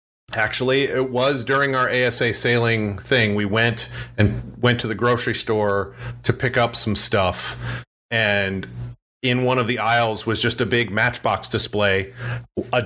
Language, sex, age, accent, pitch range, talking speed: English, male, 40-59, American, 110-125 Hz, 160 wpm